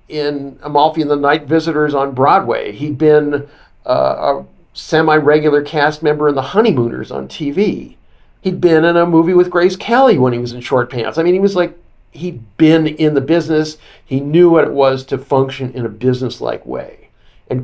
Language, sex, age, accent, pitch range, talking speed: English, male, 50-69, American, 125-155 Hz, 190 wpm